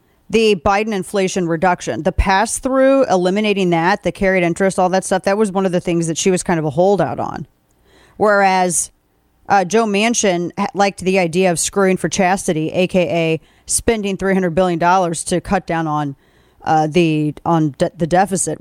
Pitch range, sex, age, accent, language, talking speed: 165-195 Hz, female, 40-59, American, English, 175 wpm